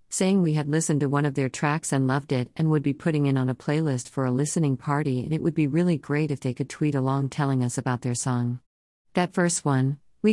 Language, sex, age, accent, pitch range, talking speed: English, female, 50-69, American, 135-165 Hz, 255 wpm